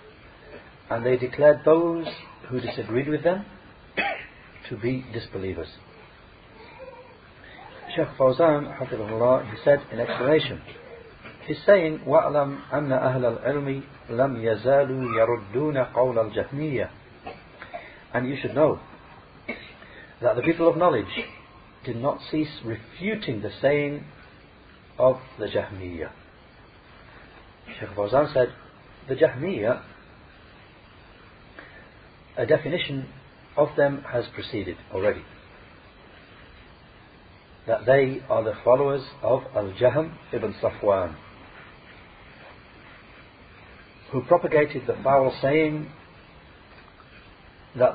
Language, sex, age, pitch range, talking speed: English, male, 50-69, 115-145 Hz, 85 wpm